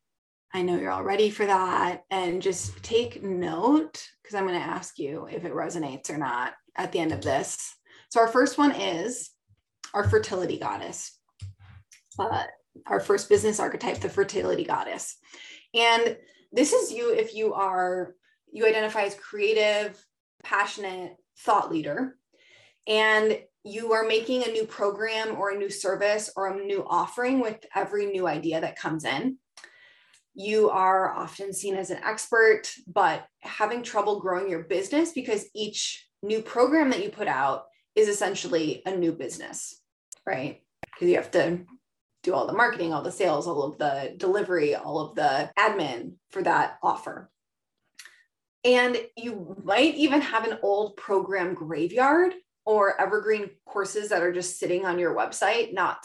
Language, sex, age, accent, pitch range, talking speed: English, female, 20-39, American, 190-255 Hz, 160 wpm